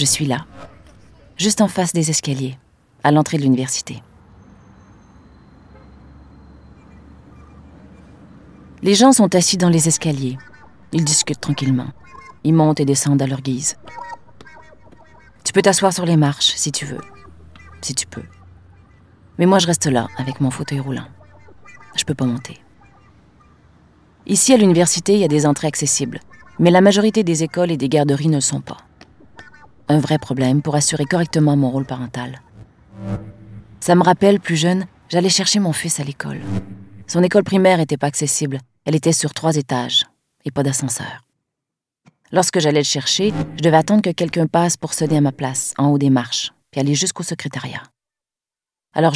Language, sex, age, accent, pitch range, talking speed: French, female, 30-49, French, 130-175 Hz, 160 wpm